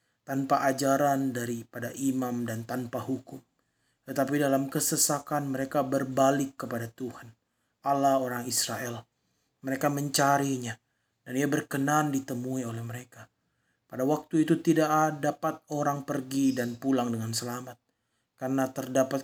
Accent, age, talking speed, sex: native, 30-49, 120 wpm, male